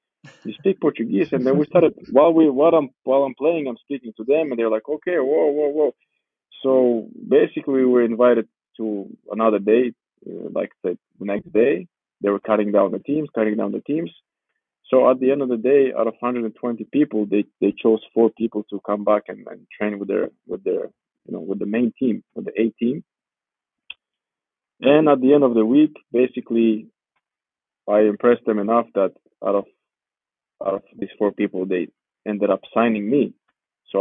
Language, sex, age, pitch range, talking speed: English, male, 20-39, 105-135 Hz, 190 wpm